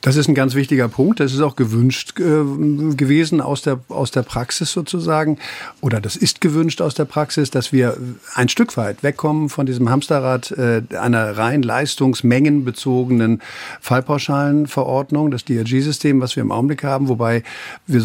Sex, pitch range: male, 120-145 Hz